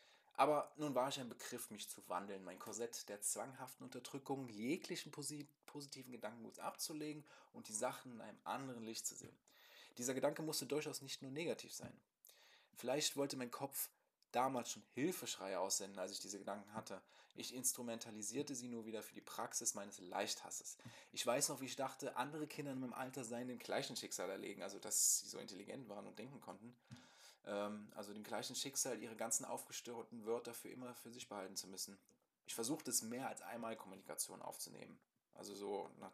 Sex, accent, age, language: male, German, 20-39, German